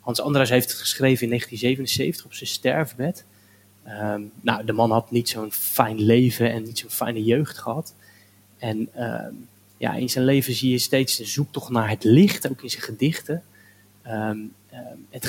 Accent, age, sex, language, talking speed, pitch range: Dutch, 20-39, male, Dutch, 175 wpm, 110-135 Hz